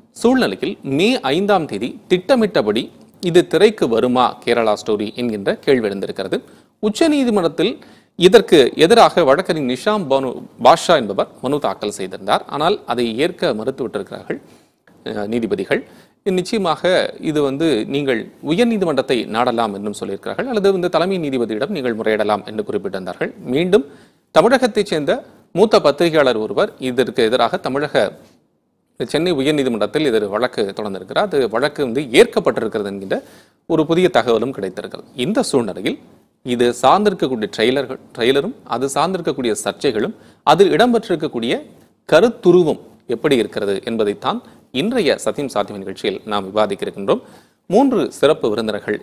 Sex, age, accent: male, 30-49, native